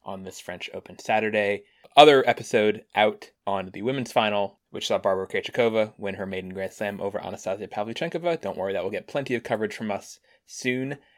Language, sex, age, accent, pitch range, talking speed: English, male, 20-39, American, 100-120 Hz, 190 wpm